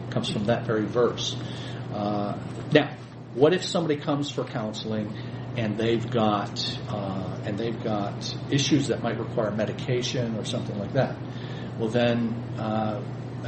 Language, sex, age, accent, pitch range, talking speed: English, male, 40-59, American, 110-130 Hz, 145 wpm